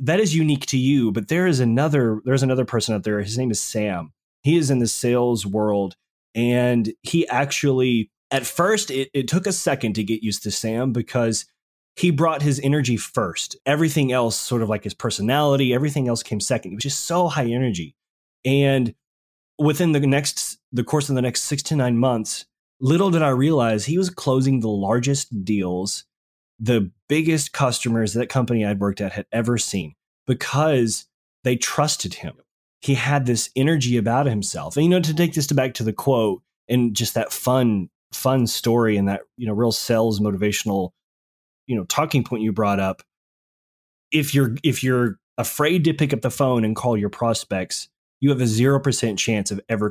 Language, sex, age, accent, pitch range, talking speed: English, male, 20-39, American, 110-140 Hz, 190 wpm